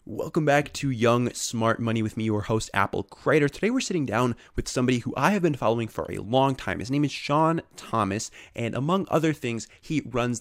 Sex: male